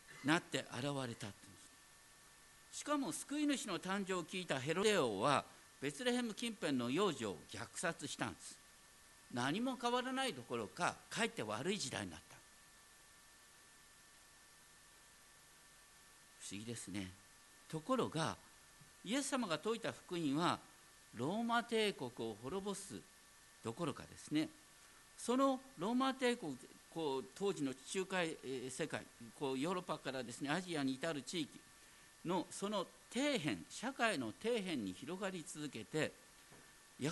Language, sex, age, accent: Japanese, male, 50-69, native